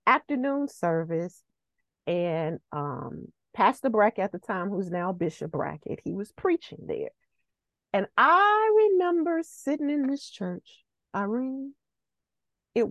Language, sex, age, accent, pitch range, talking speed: English, female, 40-59, American, 170-275 Hz, 120 wpm